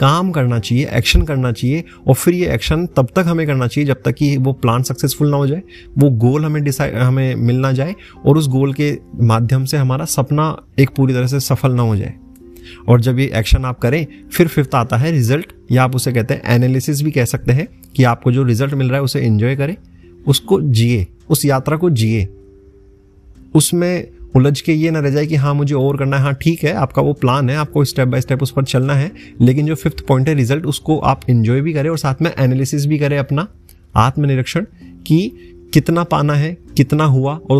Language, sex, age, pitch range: Hindi, male, 30-49, 120-145 Hz